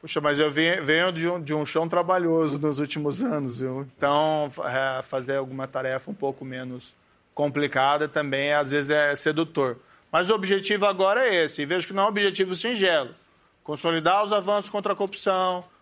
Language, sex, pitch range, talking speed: Portuguese, male, 145-185 Hz, 180 wpm